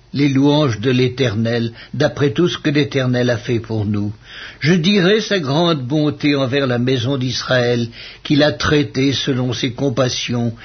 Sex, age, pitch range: male, 60-79, 125-165 Hz